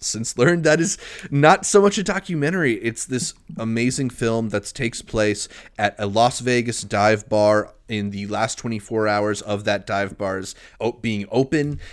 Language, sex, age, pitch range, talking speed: English, male, 30-49, 110-130 Hz, 165 wpm